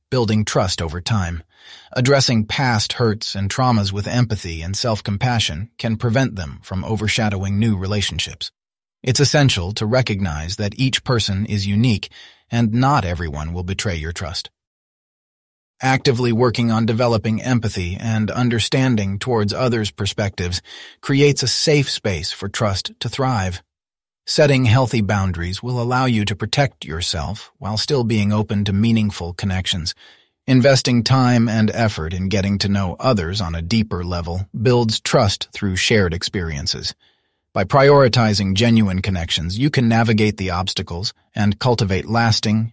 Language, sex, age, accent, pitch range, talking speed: English, male, 30-49, American, 95-120 Hz, 140 wpm